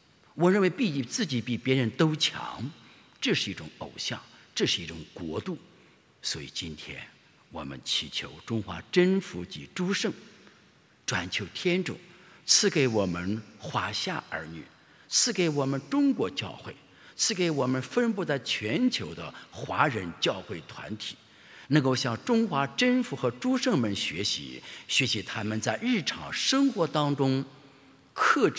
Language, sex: English, male